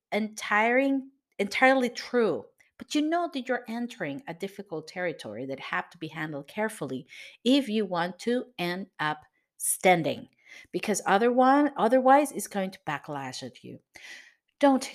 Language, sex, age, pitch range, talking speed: English, female, 50-69, 170-255 Hz, 135 wpm